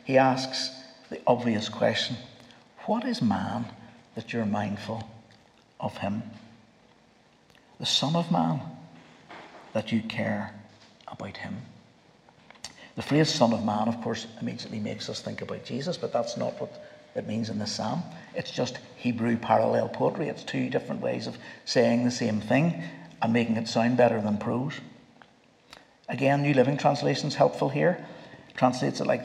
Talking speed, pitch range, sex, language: 155 wpm, 115-140 Hz, male, English